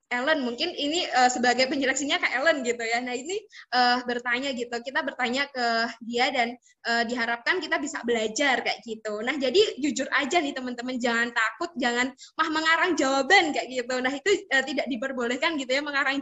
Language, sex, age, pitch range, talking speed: Indonesian, female, 20-39, 245-315 Hz, 180 wpm